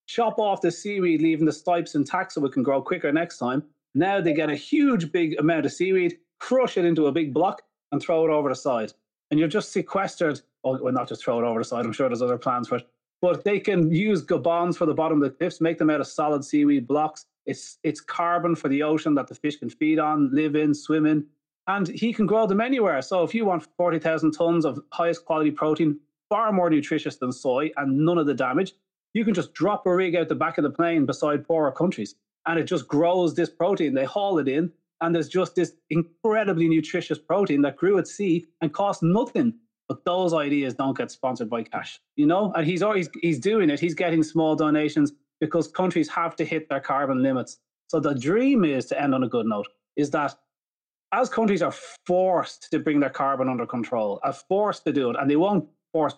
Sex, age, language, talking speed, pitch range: male, 30-49, English, 225 wpm, 150-185 Hz